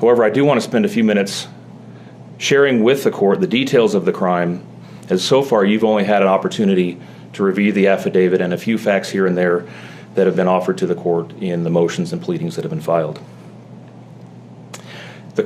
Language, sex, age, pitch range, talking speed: English, male, 30-49, 90-135 Hz, 210 wpm